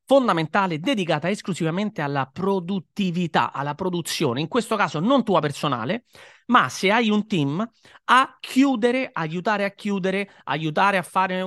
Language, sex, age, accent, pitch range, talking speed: Italian, male, 30-49, native, 160-195 Hz, 135 wpm